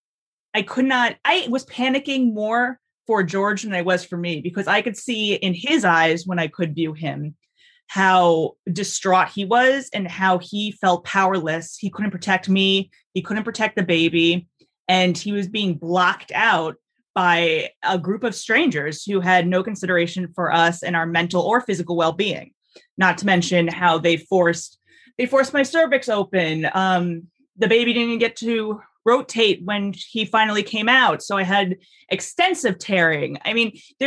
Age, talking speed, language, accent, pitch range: 30-49, 175 wpm, English, American, 175-220 Hz